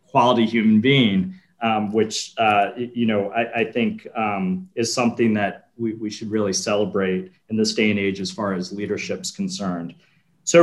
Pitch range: 110-130 Hz